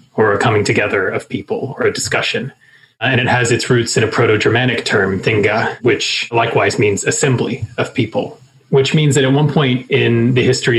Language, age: English, 30-49